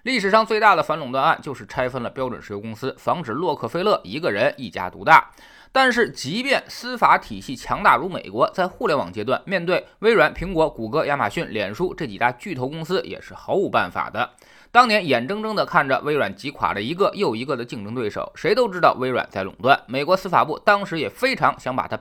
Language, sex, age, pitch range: Chinese, male, 20-39, 135-220 Hz